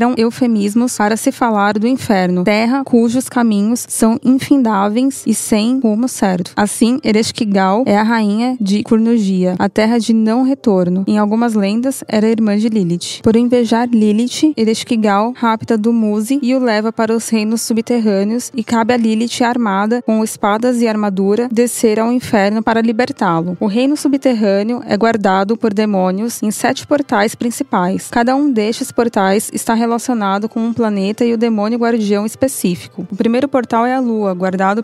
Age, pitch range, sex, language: 20-39, 205-240 Hz, female, Portuguese